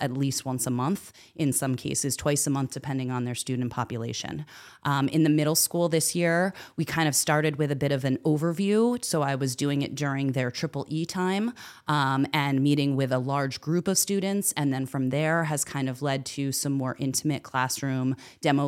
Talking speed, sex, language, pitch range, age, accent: 210 wpm, female, English, 130-155 Hz, 30-49, American